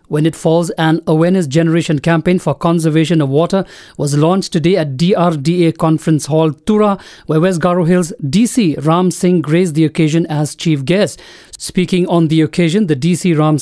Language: English